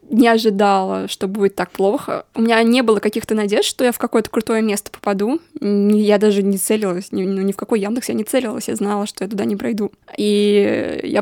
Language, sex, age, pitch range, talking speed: Russian, female, 20-39, 205-245 Hz, 215 wpm